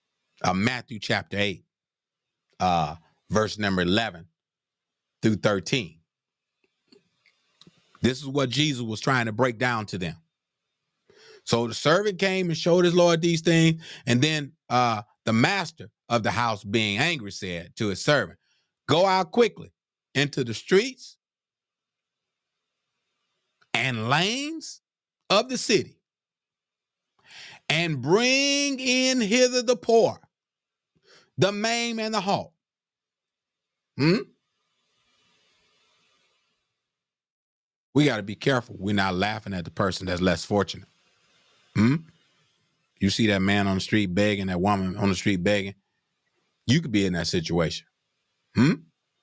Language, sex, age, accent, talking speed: English, male, 30-49, American, 125 wpm